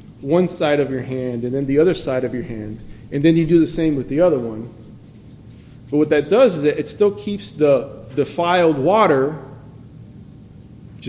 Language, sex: English, male